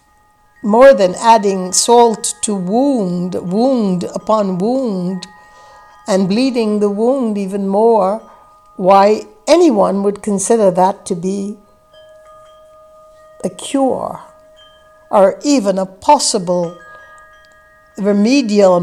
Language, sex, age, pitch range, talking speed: English, female, 60-79, 195-265 Hz, 90 wpm